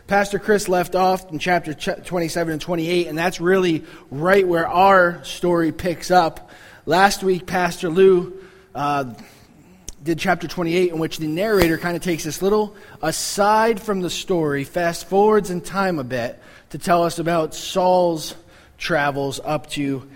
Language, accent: English, American